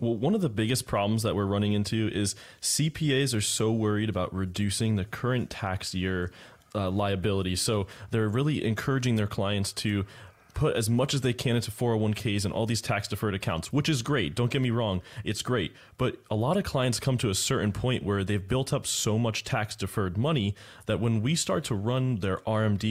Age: 20-39